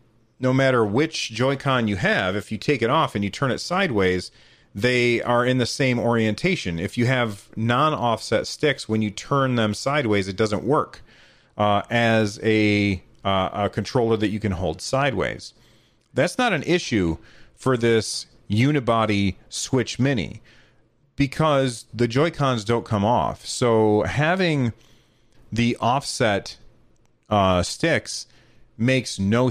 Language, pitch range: English, 110-130 Hz